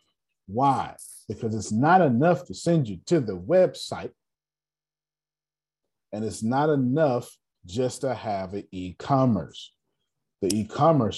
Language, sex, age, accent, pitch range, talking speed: English, male, 40-59, American, 95-135 Hz, 130 wpm